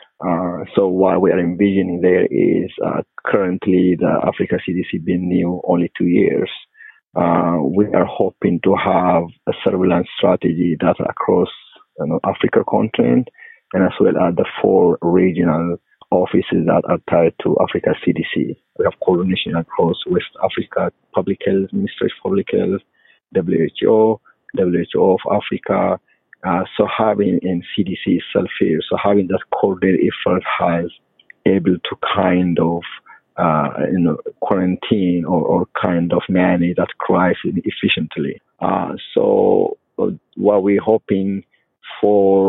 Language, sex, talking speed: English, male, 140 wpm